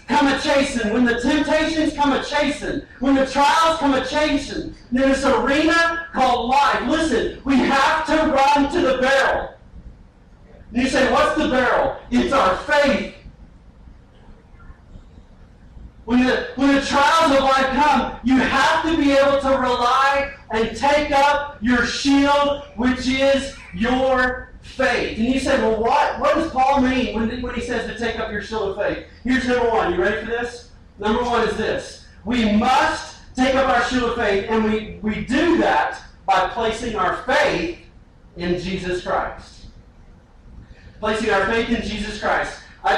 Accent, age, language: American, 40-59, English